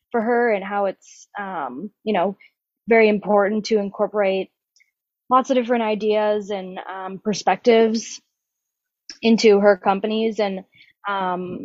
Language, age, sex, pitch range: English, 20-39, female, 195-230 Hz